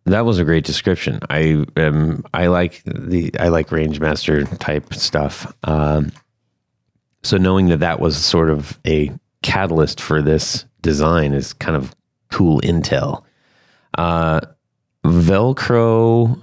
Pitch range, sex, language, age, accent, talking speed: 80-105 Hz, male, English, 30-49, American, 130 wpm